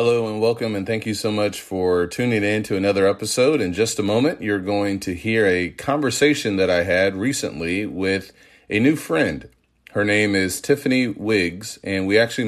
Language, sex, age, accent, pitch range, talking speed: English, male, 40-59, American, 90-105 Hz, 190 wpm